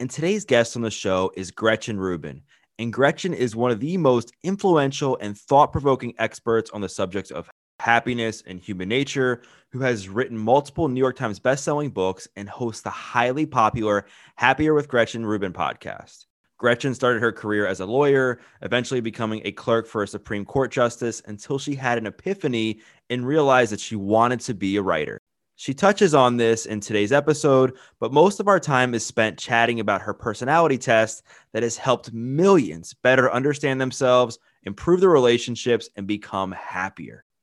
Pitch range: 110-130 Hz